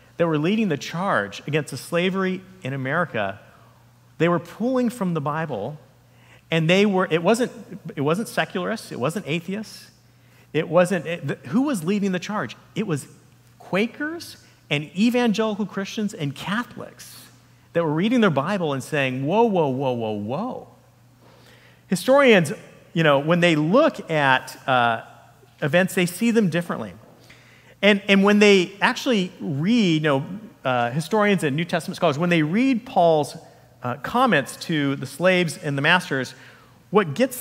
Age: 40-59